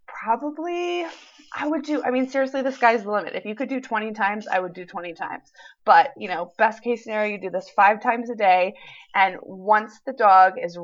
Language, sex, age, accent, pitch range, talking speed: English, female, 20-39, American, 180-260 Hz, 220 wpm